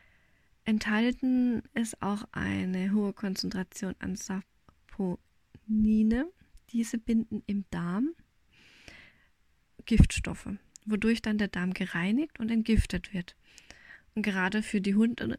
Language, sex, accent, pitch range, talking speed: German, female, German, 195-245 Hz, 100 wpm